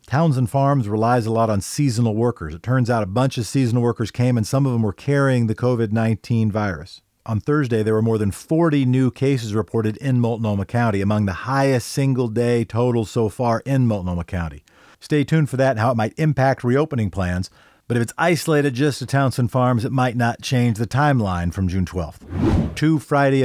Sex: male